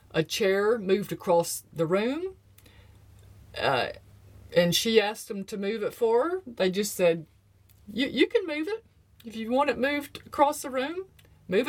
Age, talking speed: 50-69, 165 wpm